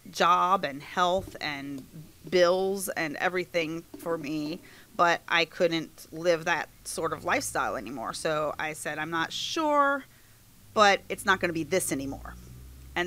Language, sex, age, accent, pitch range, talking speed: English, female, 30-49, American, 150-180 Hz, 150 wpm